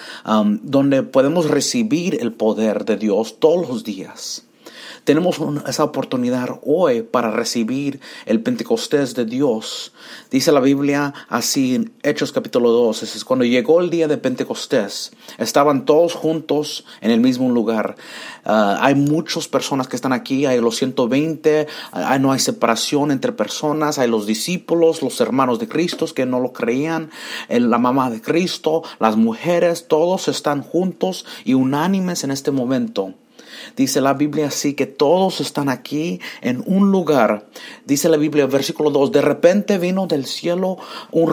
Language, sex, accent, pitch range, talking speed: English, male, Mexican, 135-185 Hz, 155 wpm